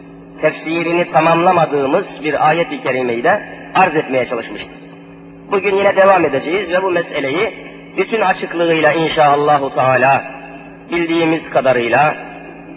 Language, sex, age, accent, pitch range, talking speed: Turkish, male, 40-59, native, 145-180 Hz, 110 wpm